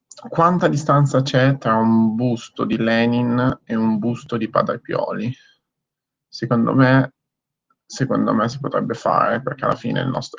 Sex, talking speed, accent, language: male, 150 wpm, native, Italian